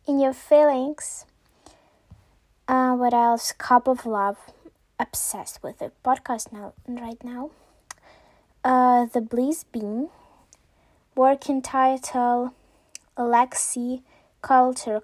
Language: English